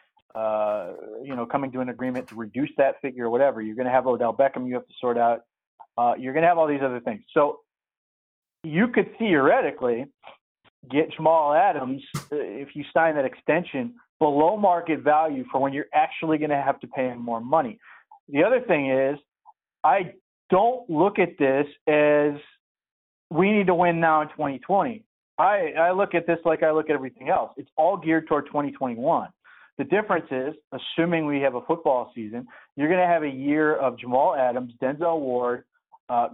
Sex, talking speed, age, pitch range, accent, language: male, 190 wpm, 40-59, 125-160 Hz, American, English